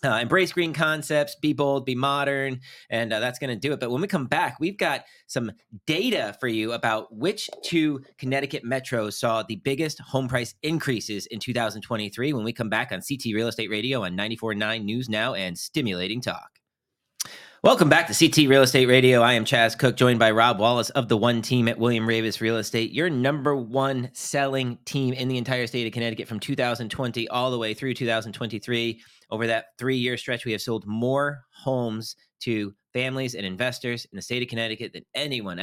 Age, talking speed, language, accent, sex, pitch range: 30-49, 195 wpm, English, American, male, 115-135 Hz